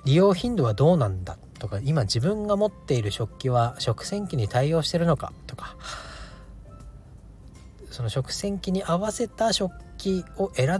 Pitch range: 115-170 Hz